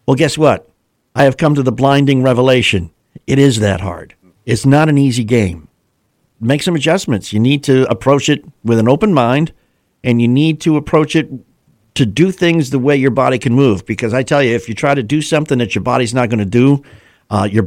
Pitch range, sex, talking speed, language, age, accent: 105-140 Hz, male, 215 wpm, English, 50-69, American